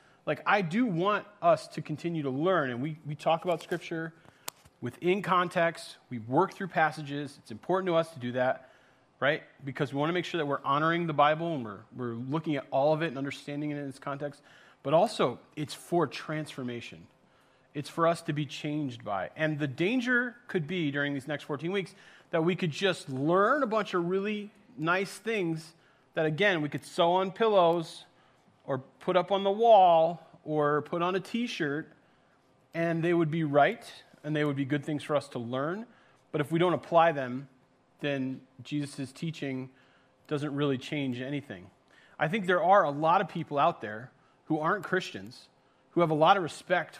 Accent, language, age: American, English, 30-49